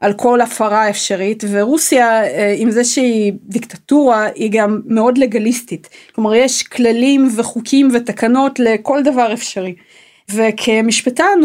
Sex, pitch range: female, 210-255 Hz